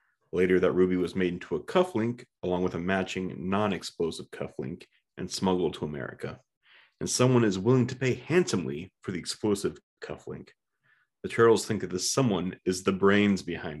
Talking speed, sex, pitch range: 170 wpm, male, 95-120 Hz